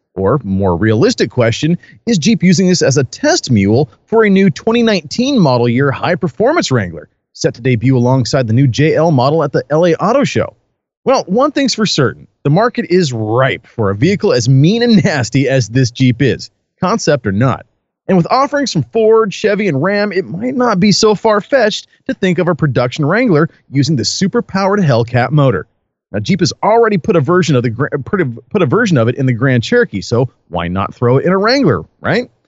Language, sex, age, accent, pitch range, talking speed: English, male, 30-49, American, 130-205 Hz, 200 wpm